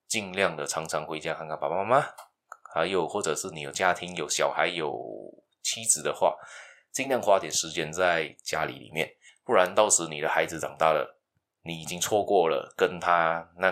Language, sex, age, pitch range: Chinese, male, 20-39, 80-105 Hz